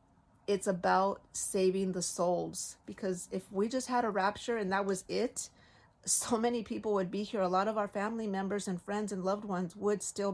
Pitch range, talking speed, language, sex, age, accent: 185-215 Hz, 205 wpm, English, female, 40-59, American